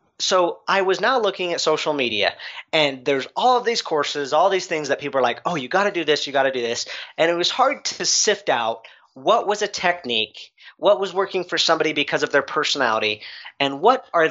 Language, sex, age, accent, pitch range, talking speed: English, male, 40-59, American, 135-190 Hz, 230 wpm